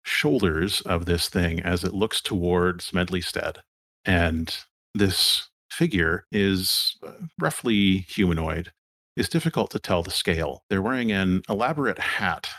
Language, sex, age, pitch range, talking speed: English, male, 40-59, 85-100 Hz, 125 wpm